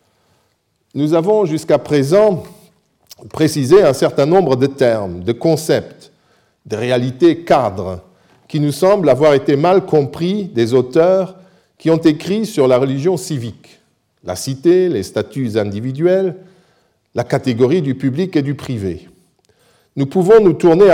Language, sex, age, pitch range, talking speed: French, male, 50-69, 125-175 Hz, 135 wpm